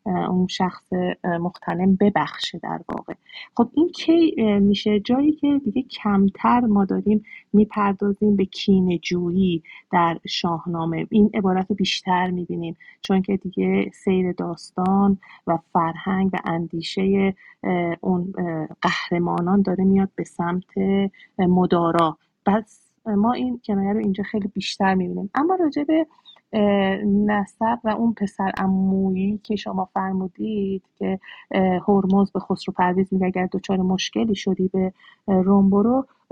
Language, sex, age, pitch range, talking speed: Persian, female, 30-49, 185-210 Hz, 120 wpm